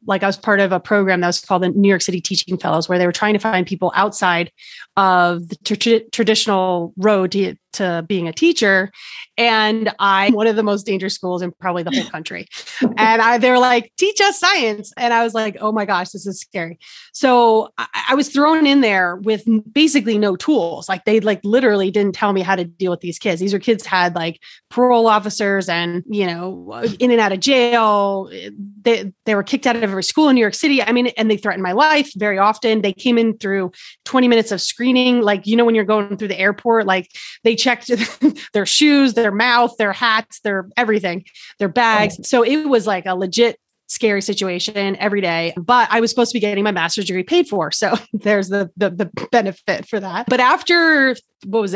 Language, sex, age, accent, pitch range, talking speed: English, female, 30-49, American, 190-230 Hz, 220 wpm